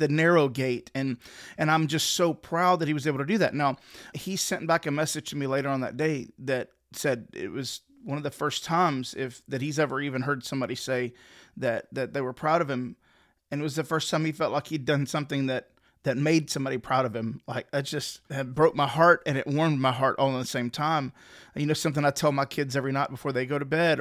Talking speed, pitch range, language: 250 wpm, 135-160 Hz, English